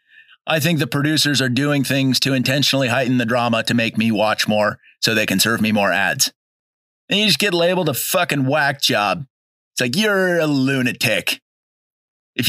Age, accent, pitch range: 30-49, American, 120-160 Hz